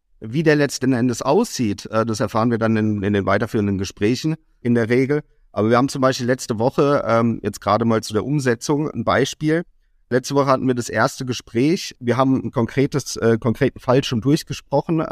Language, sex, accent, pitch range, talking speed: German, male, German, 115-140 Hz, 185 wpm